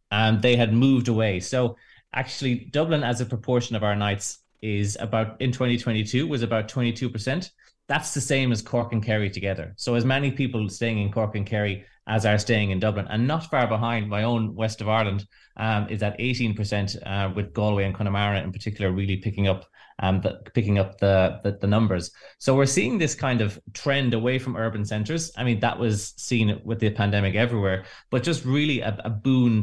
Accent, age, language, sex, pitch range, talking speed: Irish, 20-39, English, male, 100-125 Hz, 205 wpm